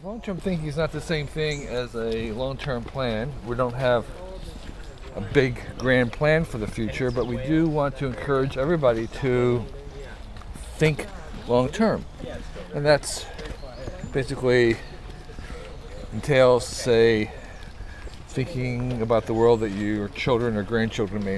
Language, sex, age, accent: English, male, 50-69, American